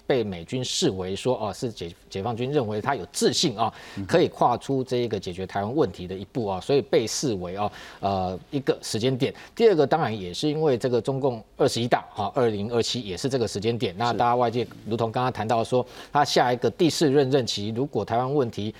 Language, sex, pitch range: Chinese, male, 100-135 Hz